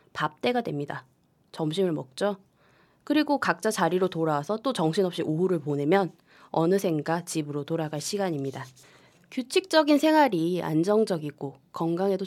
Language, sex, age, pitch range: Korean, female, 20-39, 155-225 Hz